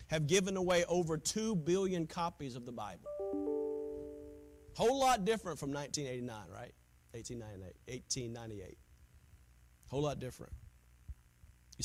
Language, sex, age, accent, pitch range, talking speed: English, male, 40-59, American, 100-160 Hz, 110 wpm